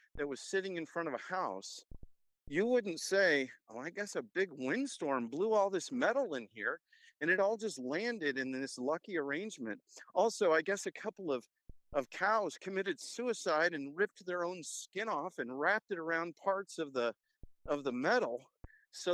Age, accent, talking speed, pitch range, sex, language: 50-69, American, 185 wpm, 150-225 Hz, male, English